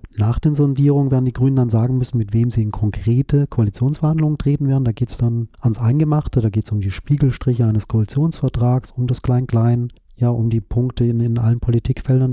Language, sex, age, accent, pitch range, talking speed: German, male, 40-59, German, 110-130 Hz, 200 wpm